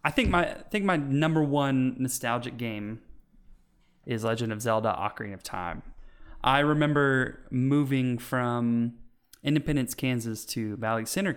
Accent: American